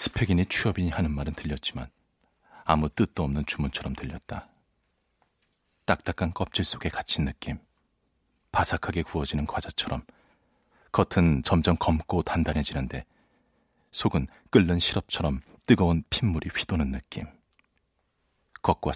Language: Korean